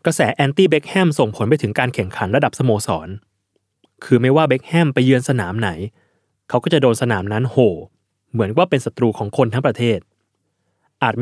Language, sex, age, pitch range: Thai, male, 20-39, 100-135 Hz